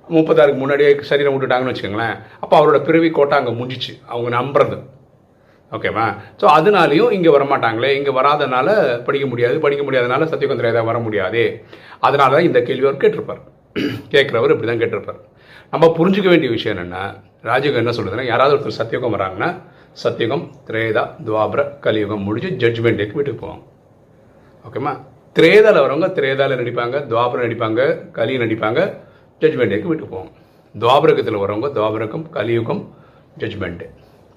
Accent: native